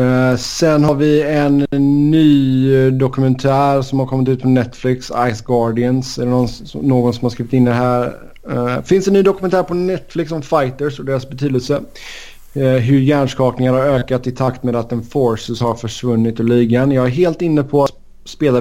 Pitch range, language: 120-140 Hz, Swedish